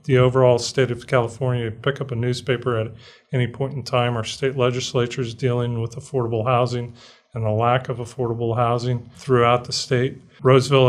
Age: 40-59